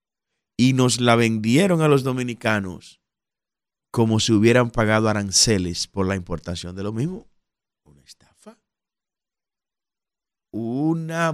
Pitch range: 95-135 Hz